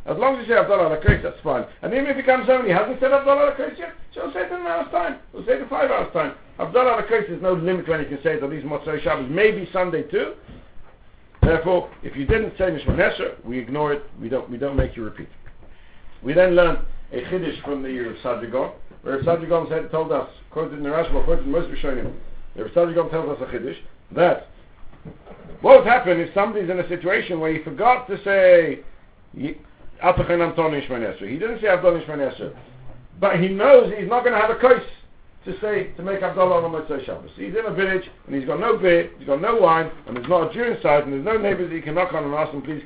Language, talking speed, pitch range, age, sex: English, 230 wpm, 135-195 Hz, 60-79, male